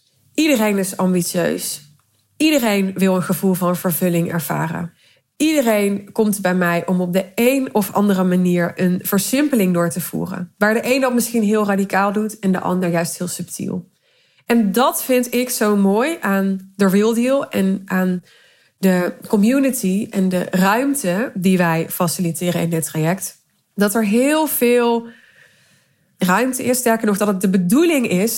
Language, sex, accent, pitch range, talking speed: Dutch, female, Dutch, 175-225 Hz, 160 wpm